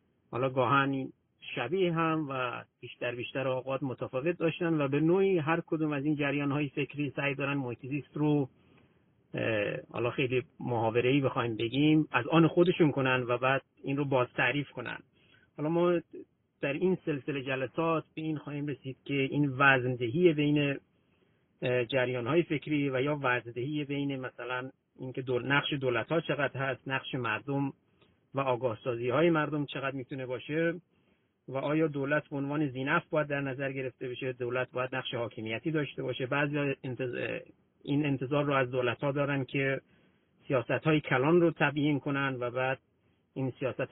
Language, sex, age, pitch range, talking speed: Persian, male, 50-69, 125-150 Hz, 155 wpm